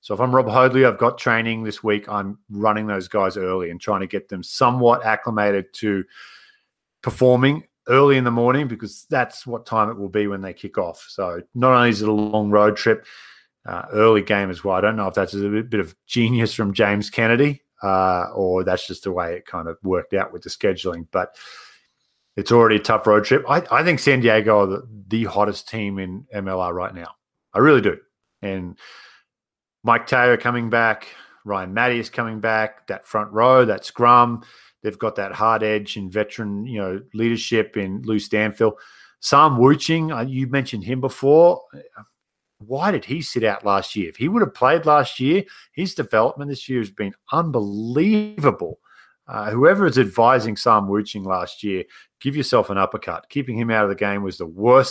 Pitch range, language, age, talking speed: 100-125 Hz, English, 30-49, 195 wpm